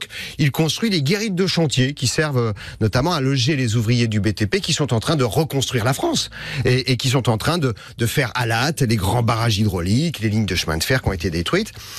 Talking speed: 245 wpm